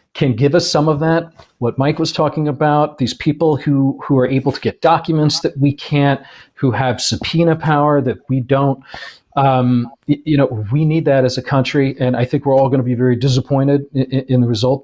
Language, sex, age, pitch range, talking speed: English, male, 40-59, 125-150 Hz, 210 wpm